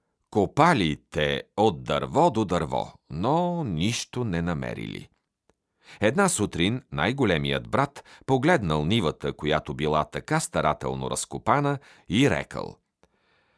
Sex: male